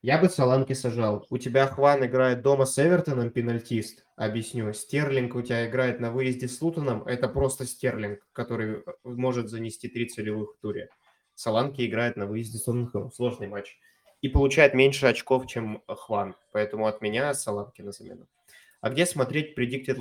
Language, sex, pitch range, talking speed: Russian, male, 115-140 Hz, 165 wpm